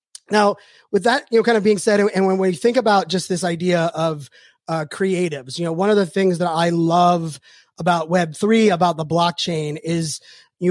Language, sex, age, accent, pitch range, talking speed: English, male, 30-49, American, 175-210 Hz, 200 wpm